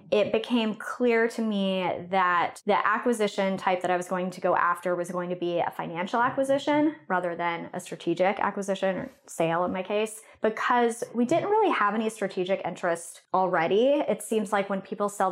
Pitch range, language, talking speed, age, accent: 180-215 Hz, English, 190 wpm, 20-39, American